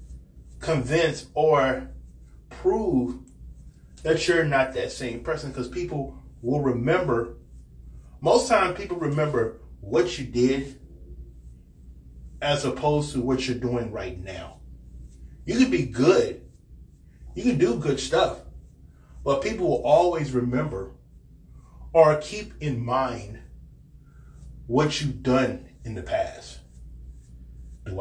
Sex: male